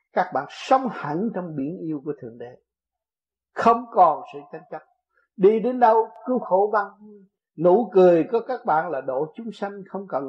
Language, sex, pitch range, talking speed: Vietnamese, male, 135-220 Hz, 185 wpm